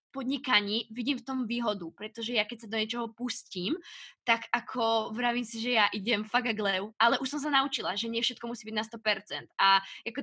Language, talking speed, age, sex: Slovak, 210 wpm, 20-39, female